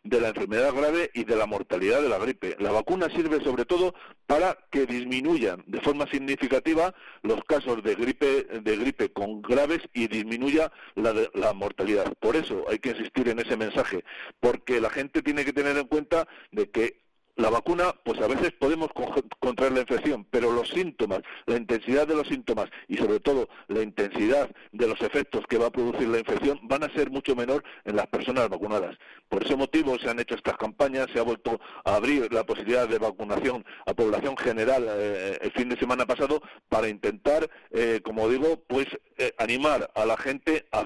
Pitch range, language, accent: 120-155 Hz, Spanish, Spanish